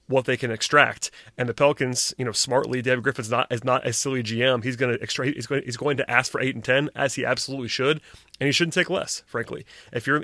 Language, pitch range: English, 125-150 Hz